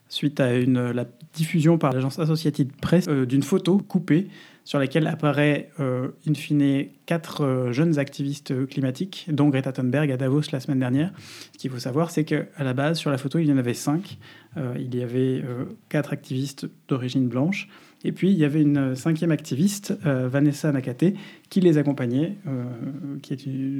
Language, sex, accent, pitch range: French, male, French, 135-160 Hz